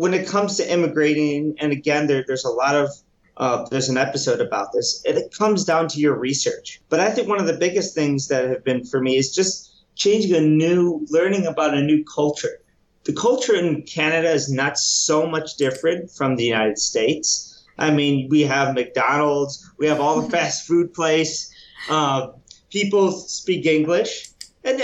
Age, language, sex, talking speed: 30-49, English, male, 185 wpm